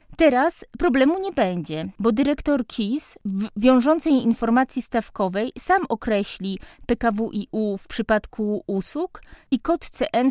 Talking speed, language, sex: 115 wpm, Polish, female